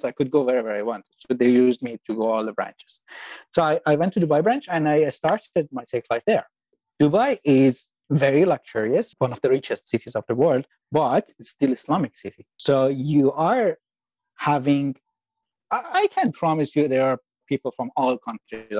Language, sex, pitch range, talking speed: English, male, 125-160 Hz, 190 wpm